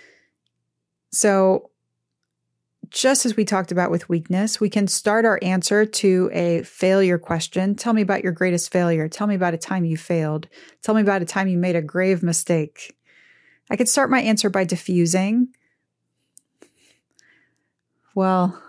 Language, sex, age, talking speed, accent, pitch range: English, female, 30-49, 155 wpm, American, 170-205 Hz